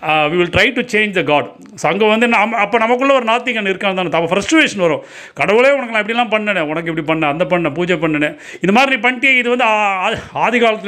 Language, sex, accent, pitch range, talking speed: Tamil, male, native, 165-225 Hz, 215 wpm